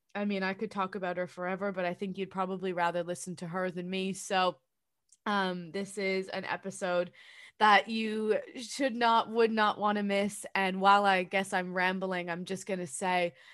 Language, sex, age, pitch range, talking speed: English, female, 20-39, 180-210 Hz, 200 wpm